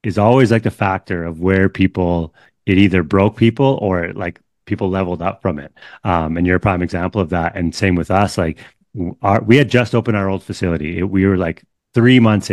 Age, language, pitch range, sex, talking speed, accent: 30-49, English, 90-105 Hz, male, 220 wpm, American